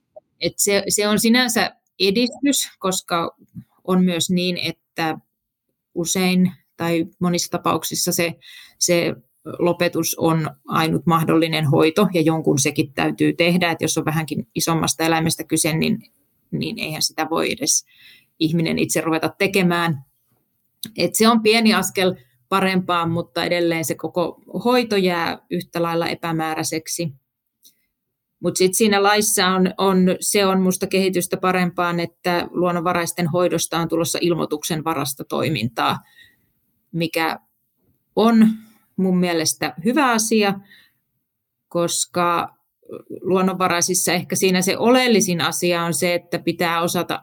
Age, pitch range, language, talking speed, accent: 30-49, 165-185 Hz, Finnish, 120 wpm, native